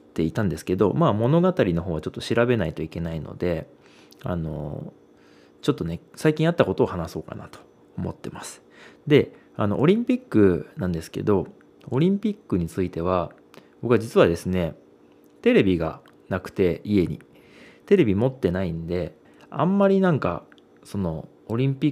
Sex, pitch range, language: male, 80-130 Hz, Japanese